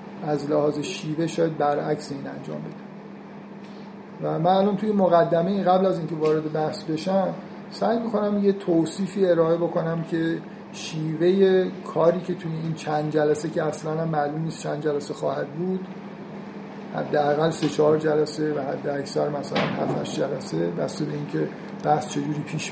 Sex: male